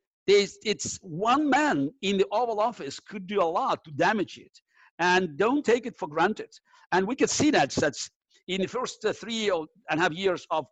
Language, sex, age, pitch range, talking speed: English, male, 50-69, 170-220 Hz, 195 wpm